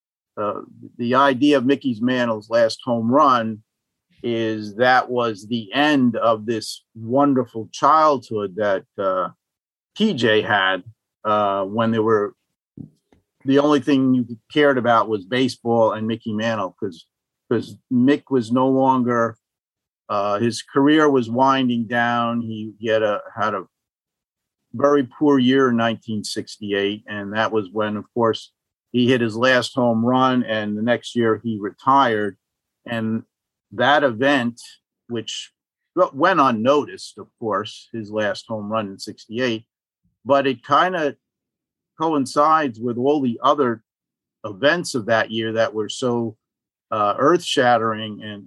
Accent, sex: American, male